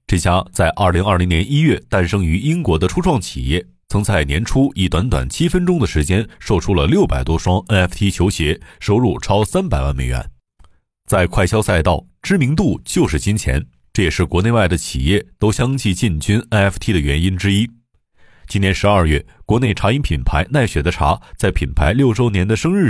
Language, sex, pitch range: Chinese, male, 85-115 Hz